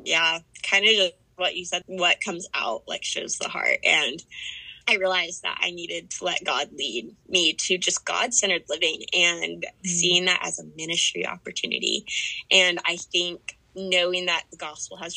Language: English